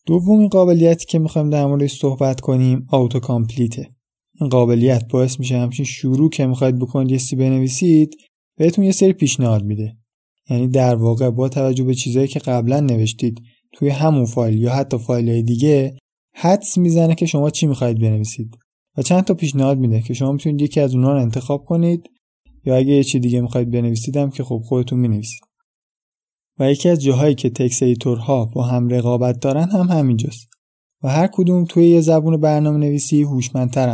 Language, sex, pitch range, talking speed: Persian, male, 125-155 Hz, 170 wpm